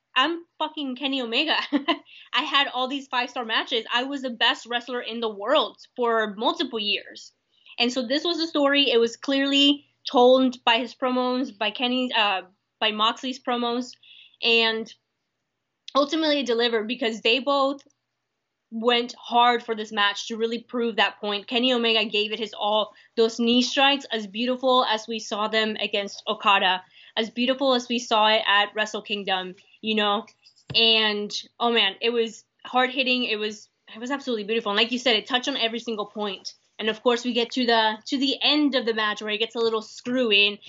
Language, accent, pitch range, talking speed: English, American, 220-255 Hz, 185 wpm